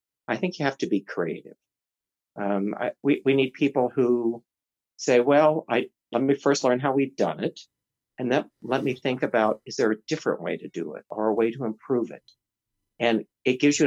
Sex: male